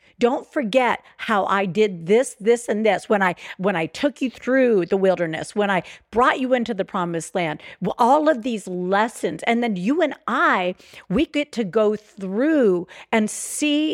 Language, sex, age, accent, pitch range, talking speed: English, female, 50-69, American, 190-250 Hz, 180 wpm